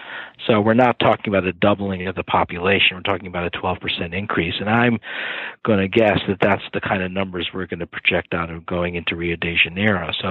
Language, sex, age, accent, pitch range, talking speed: English, male, 40-59, American, 90-105 Hz, 225 wpm